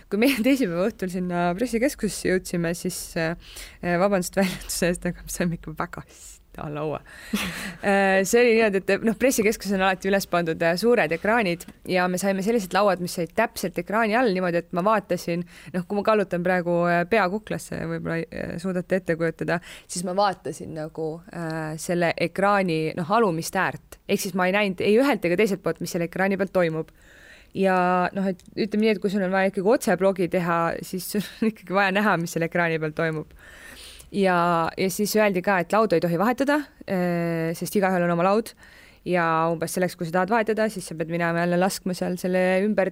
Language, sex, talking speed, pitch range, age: English, female, 180 wpm, 165-195 Hz, 20-39